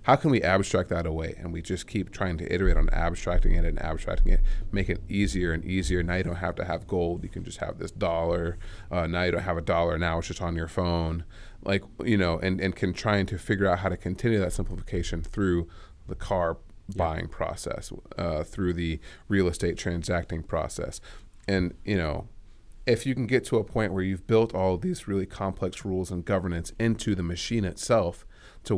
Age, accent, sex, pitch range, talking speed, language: 30-49, American, male, 85-100 Hz, 215 wpm, English